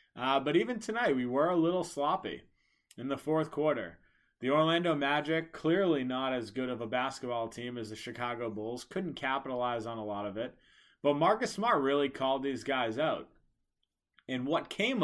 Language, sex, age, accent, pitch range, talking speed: English, male, 30-49, American, 125-155 Hz, 185 wpm